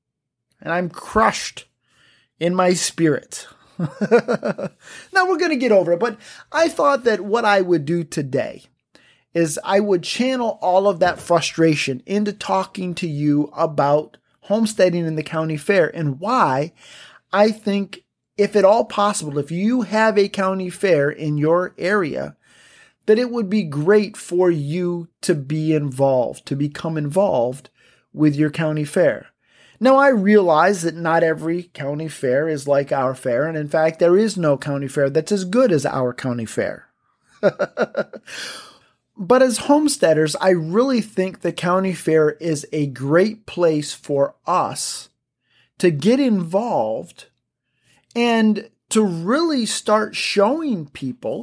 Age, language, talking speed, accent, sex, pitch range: 30-49, English, 145 wpm, American, male, 155-210 Hz